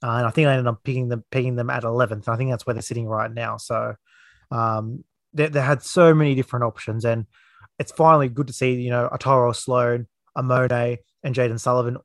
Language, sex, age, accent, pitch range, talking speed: English, male, 20-39, Australian, 120-140 Hz, 220 wpm